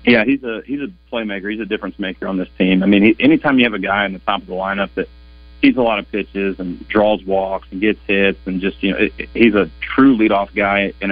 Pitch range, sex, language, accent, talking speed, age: 95-105 Hz, male, English, American, 275 wpm, 30-49